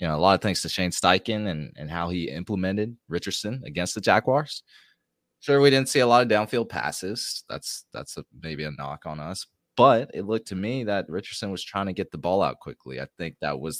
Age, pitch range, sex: 20-39, 80-105 Hz, male